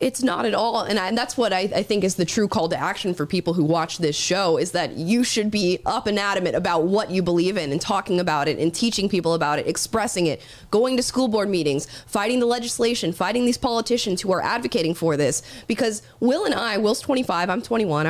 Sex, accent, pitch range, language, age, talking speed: female, American, 170-230 Hz, English, 20-39, 240 wpm